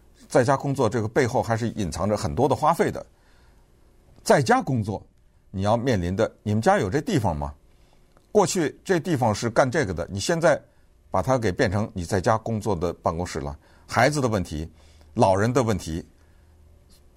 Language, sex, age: Chinese, male, 50-69